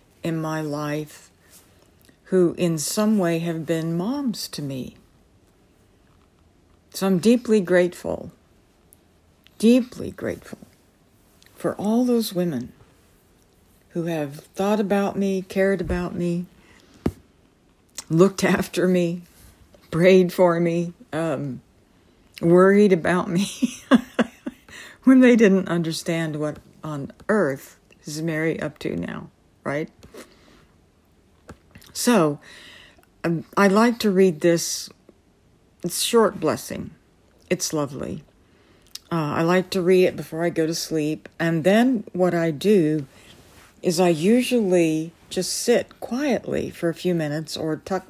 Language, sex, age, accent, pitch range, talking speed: English, female, 60-79, American, 155-190 Hz, 115 wpm